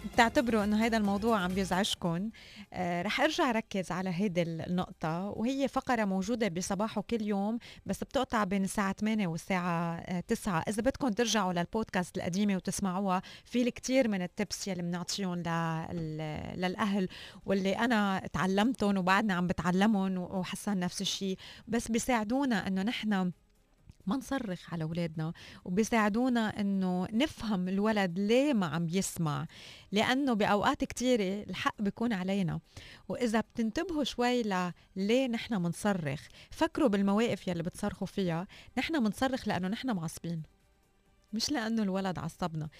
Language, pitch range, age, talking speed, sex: Arabic, 185-235 Hz, 20-39, 130 wpm, female